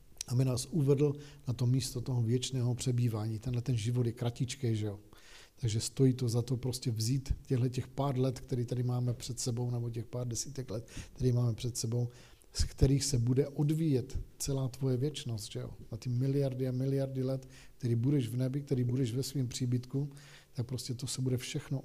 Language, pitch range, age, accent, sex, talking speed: Czech, 120-140 Hz, 50-69, native, male, 200 wpm